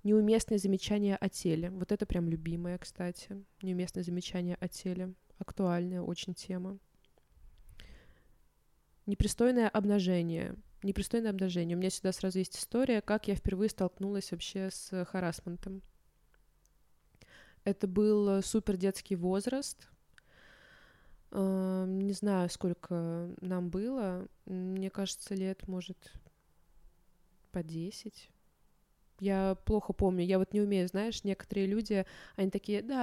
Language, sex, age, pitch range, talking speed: Russian, female, 20-39, 180-215 Hz, 115 wpm